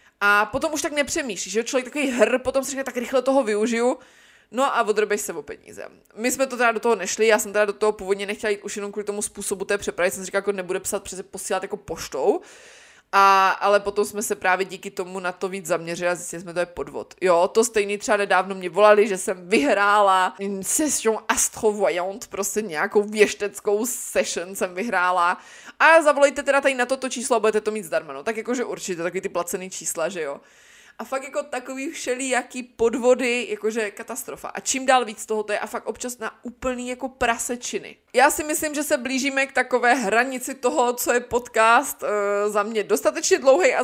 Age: 20-39